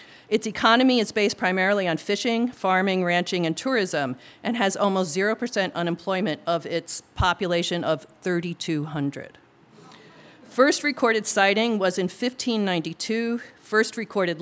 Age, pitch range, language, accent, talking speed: 50-69, 165-205 Hz, English, American, 120 wpm